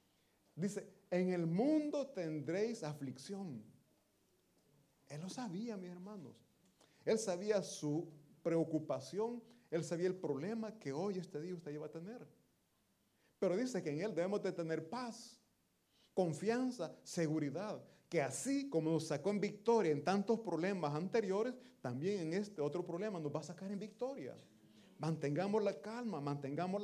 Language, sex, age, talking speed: Italian, male, 40-59, 145 wpm